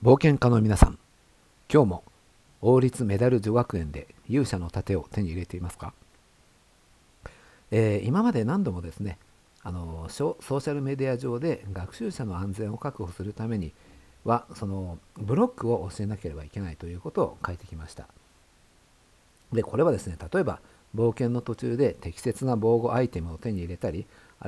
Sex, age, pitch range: male, 50-69, 90-130 Hz